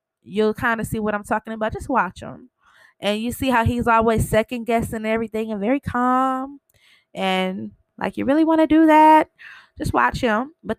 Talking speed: 195 wpm